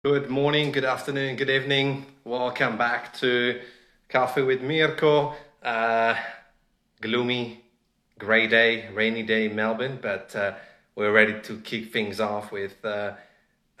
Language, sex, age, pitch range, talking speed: English, male, 30-49, 115-145 Hz, 130 wpm